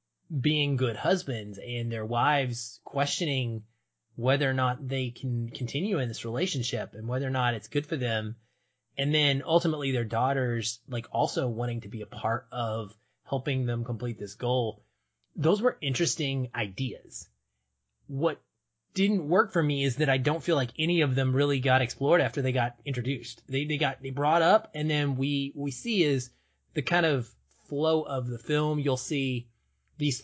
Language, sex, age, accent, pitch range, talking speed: English, male, 30-49, American, 115-145 Hz, 175 wpm